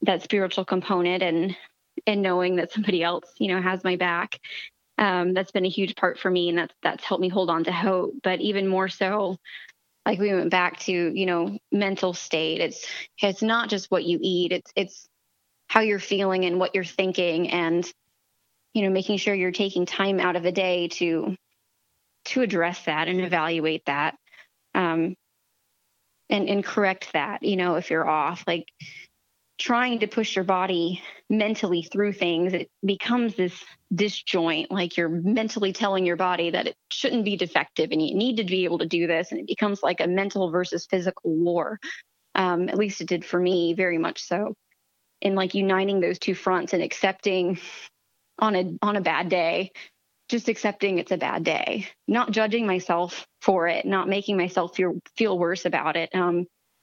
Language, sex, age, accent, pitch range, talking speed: English, female, 20-39, American, 175-200 Hz, 185 wpm